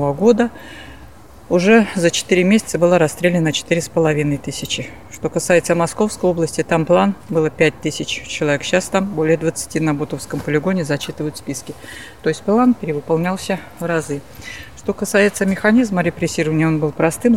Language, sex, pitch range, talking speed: Russian, female, 155-185 Hz, 140 wpm